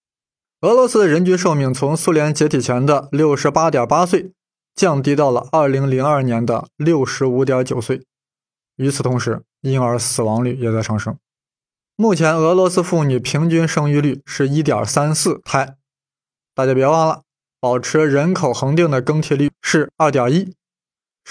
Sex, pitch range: male, 135-175 Hz